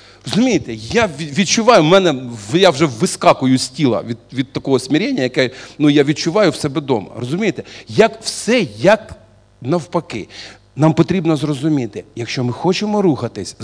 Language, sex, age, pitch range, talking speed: Russian, male, 40-59, 120-185 Hz, 145 wpm